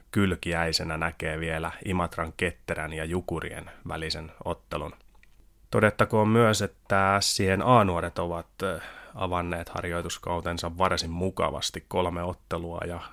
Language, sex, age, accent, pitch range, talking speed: Finnish, male, 30-49, native, 85-95 Hz, 100 wpm